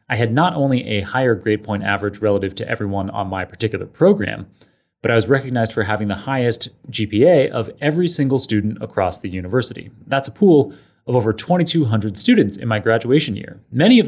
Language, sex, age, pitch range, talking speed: English, male, 30-49, 110-145 Hz, 190 wpm